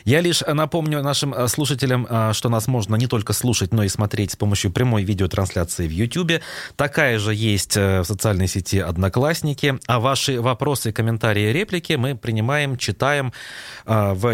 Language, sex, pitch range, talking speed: Russian, male, 95-130 Hz, 150 wpm